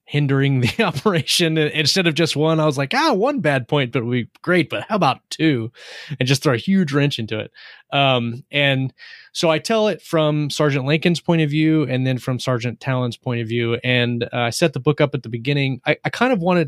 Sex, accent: male, American